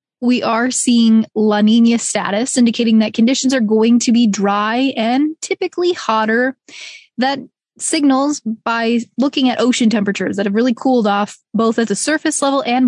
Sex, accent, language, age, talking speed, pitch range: female, American, English, 20-39, 165 wpm, 215-260 Hz